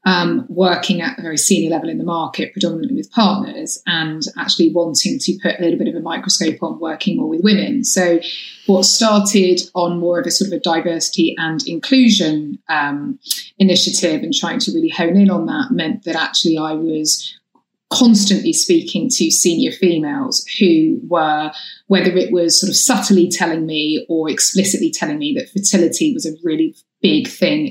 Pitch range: 165-270 Hz